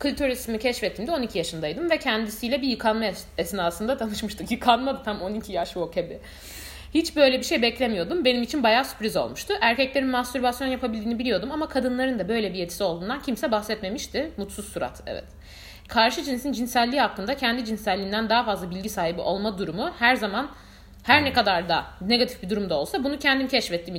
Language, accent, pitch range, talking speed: Turkish, native, 205-265 Hz, 170 wpm